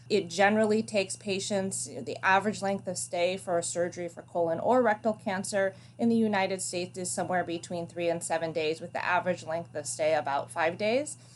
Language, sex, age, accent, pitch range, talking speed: English, female, 30-49, American, 170-210 Hz, 195 wpm